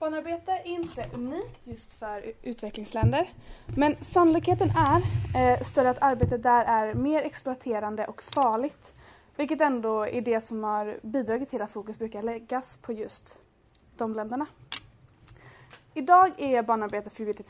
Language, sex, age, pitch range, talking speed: Swedish, female, 20-39, 220-310 Hz, 135 wpm